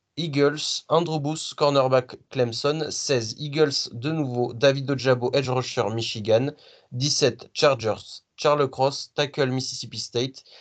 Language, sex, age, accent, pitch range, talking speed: French, male, 30-49, French, 125-150 Hz, 120 wpm